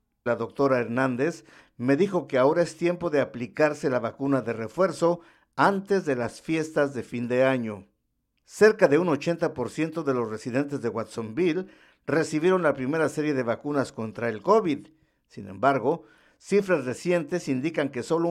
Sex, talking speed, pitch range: male, 155 wpm, 125-165 Hz